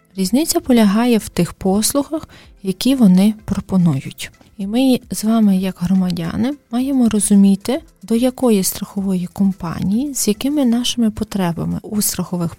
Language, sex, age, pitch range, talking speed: Ukrainian, female, 30-49, 185-235 Hz, 125 wpm